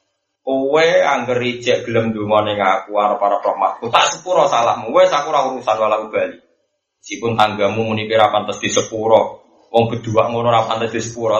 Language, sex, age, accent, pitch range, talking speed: Indonesian, male, 20-39, native, 105-145 Hz, 175 wpm